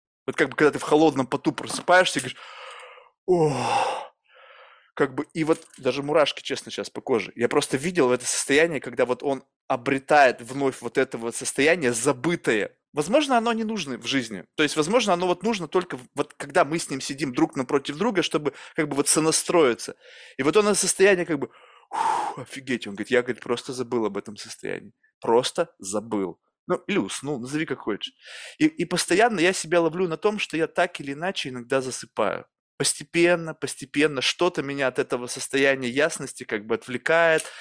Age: 20-39